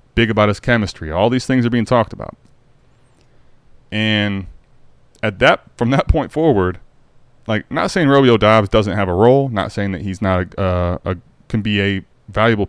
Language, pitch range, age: English, 95-120 Hz, 20-39